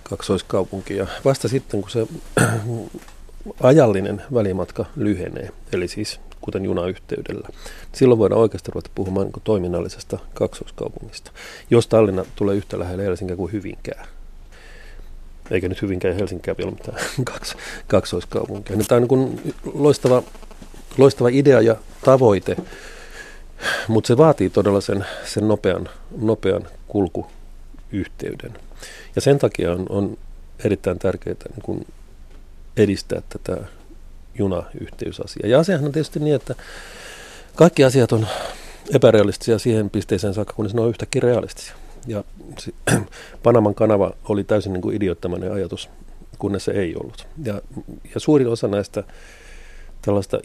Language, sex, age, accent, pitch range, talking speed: Finnish, male, 40-59, native, 95-120 Hz, 120 wpm